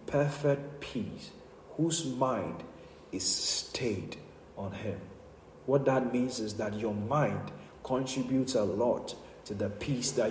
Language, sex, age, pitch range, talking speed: English, male, 40-59, 130-165 Hz, 130 wpm